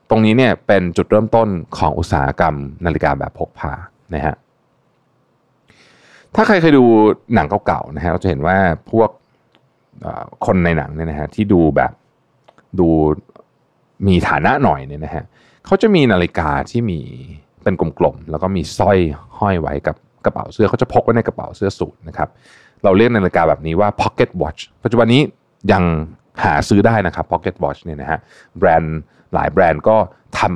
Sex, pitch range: male, 75-105 Hz